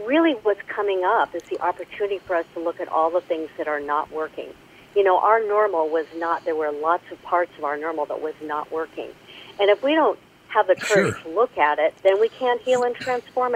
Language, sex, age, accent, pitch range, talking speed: English, female, 50-69, American, 175-240 Hz, 240 wpm